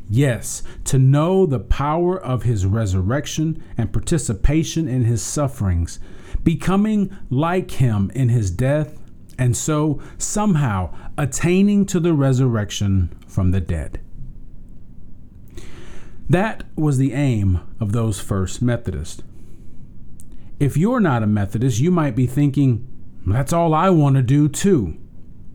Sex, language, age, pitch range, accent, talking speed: male, English, 40-59, 95-145 Hz, American, 125 wpm